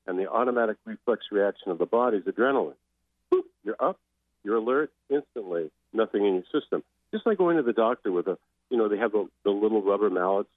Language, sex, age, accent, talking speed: English, male, 50-69, American, 205 wpm